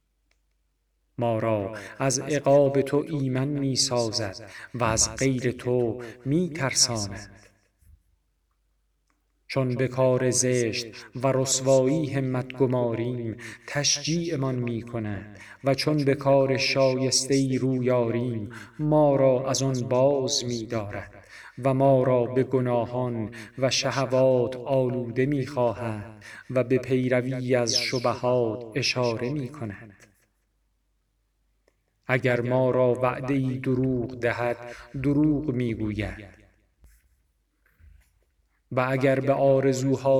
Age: 40-59